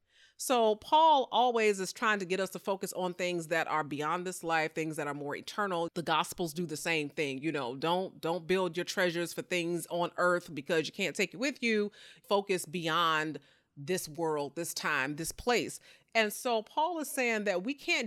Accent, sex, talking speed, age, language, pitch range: American, female, 205 wpm, 30-49, English, 165-220 Hz